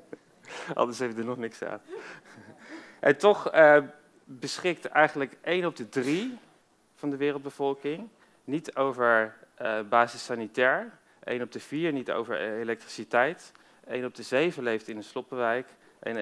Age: 40-59